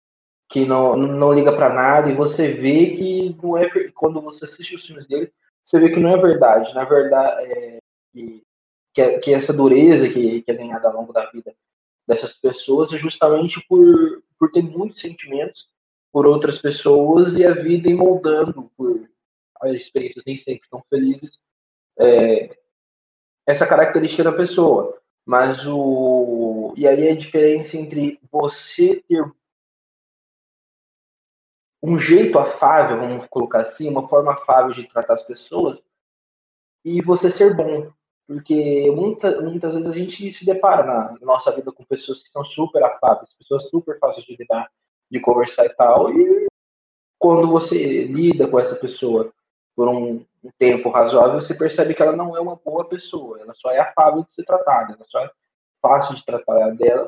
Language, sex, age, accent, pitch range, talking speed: Portuguese, male, 20-39, Brazilian, 140-180 Hz, 165 wpm